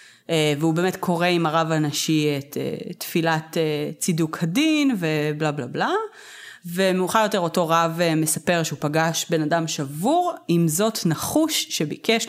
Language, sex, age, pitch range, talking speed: Hebrew, female, 30-49, 160-225 Hz, 135 wpm